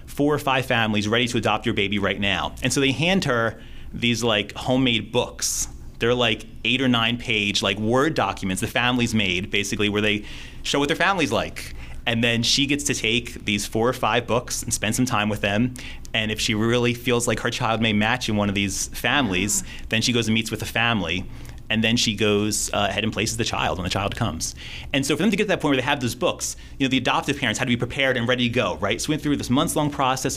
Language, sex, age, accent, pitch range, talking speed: English, male, 30-49, American, 105-125 Hz, 255 wpm